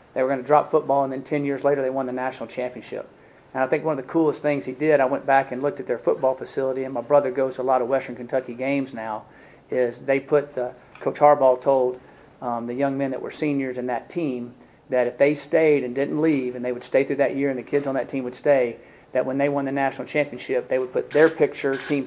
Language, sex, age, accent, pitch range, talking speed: English, male, 40-59, American, 125-140 Hz, 270 wpm